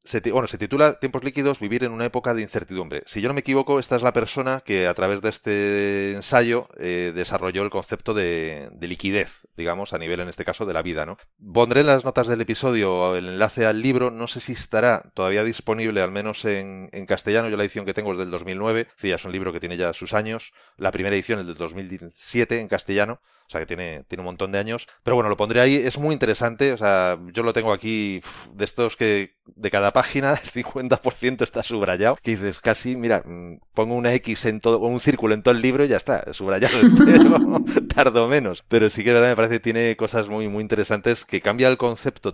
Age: 30-49